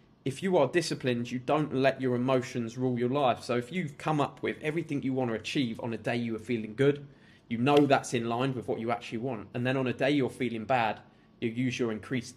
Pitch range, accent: 120-140 Hz, British